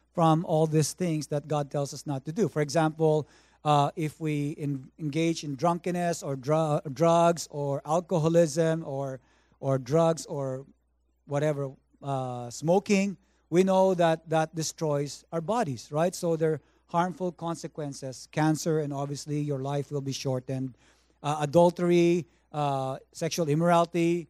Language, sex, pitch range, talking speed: English, male, 145-175 Hz, 145 wpm